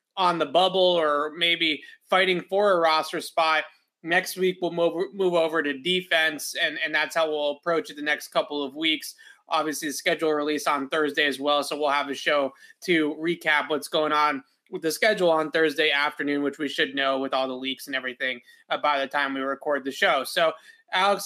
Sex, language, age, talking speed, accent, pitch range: male, English, 20-39, 210 wpm, American, 150-185 Hz